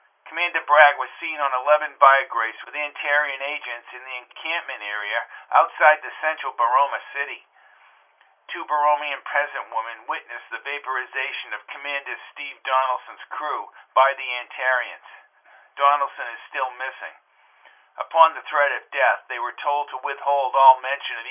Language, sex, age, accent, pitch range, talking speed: English, male, 50-69, American, 130-150 Hz, 145 wpm